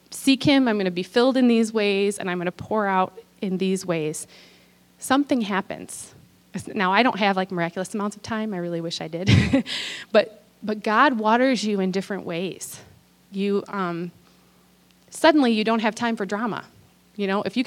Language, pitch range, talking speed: English, 185-240 Hz, 190 wpm